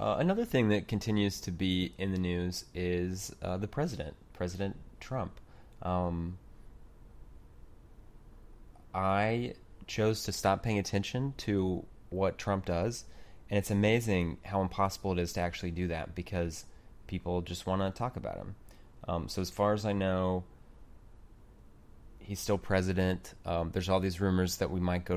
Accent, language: American, English